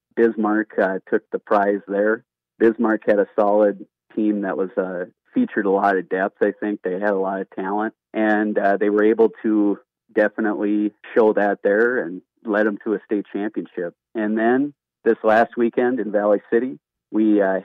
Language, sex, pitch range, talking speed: English, male, 100-110 Hz, 185 wpm